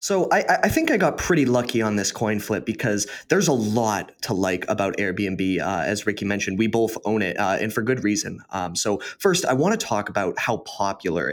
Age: 20-39